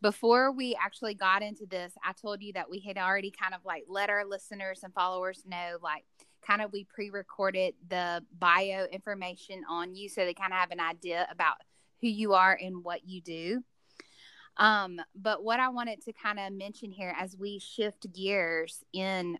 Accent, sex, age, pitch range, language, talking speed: American, female, 10-29, 180-210 Hz, English, 190 wpm